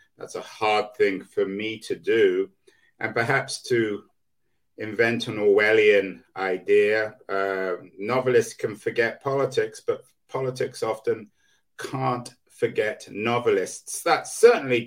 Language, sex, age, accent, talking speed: English, male, 50-69, British, 115 wpm